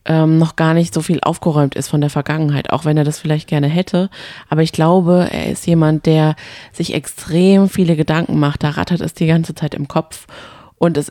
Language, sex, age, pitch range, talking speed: German, female, 20-39, 150-175 Hz, 210 wpm